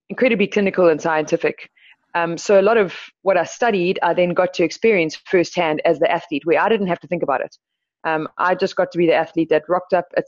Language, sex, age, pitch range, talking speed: English, female, 20-39, 155-185 Hz, 240 wpm